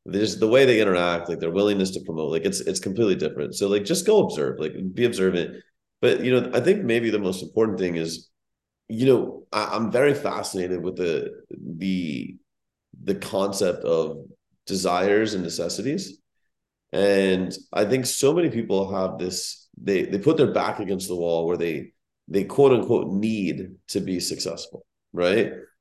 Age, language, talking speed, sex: 30-49, English, 175 wpm, male